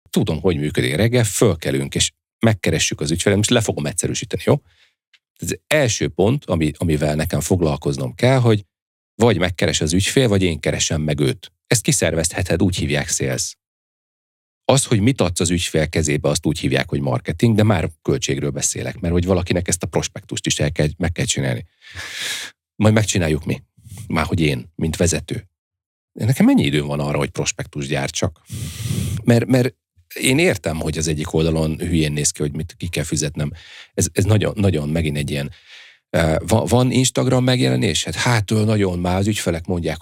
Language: Hungarian